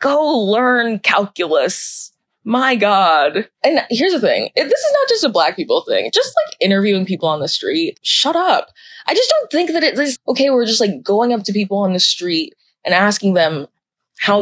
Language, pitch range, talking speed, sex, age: English, 175-260 Hz, 195 wpm, female, 20-39